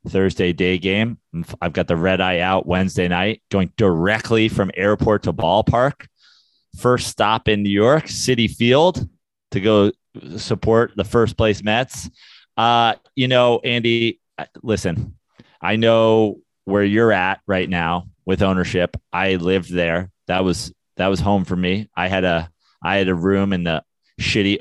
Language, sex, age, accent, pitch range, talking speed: English, male, 30-49, American, 95-110 Hz, 160 wpm